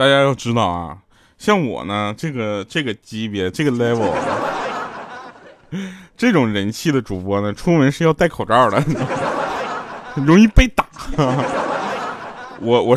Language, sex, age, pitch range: Chinese, male, 20-39, 105-165 Hz